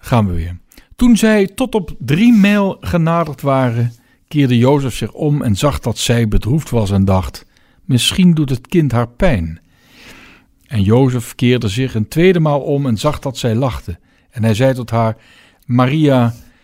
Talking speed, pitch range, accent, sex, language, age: 175 wpm, 115-165 Hz, Dutch, male, Dutch, 60-79